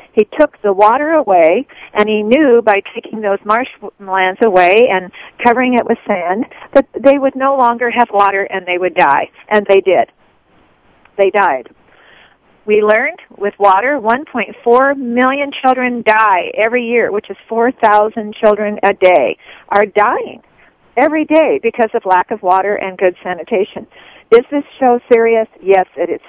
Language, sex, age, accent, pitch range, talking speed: English, female, 50-69, American, 190-240 Hz, 155 wpm